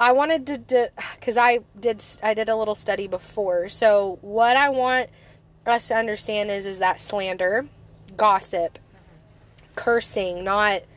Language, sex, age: English, female, 20-39